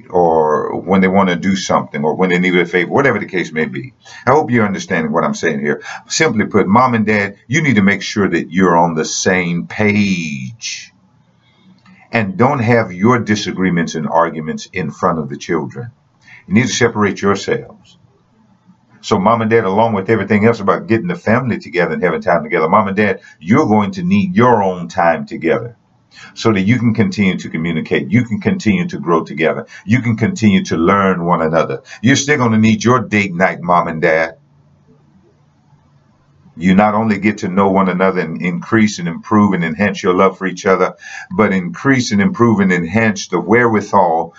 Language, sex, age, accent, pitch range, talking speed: English, male, 50-69, American, 90-115 Hz, 195 wpm